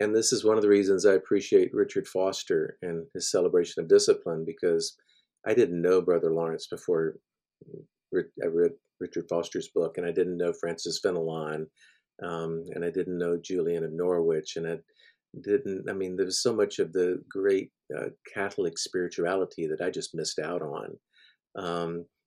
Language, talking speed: English, 170 wpm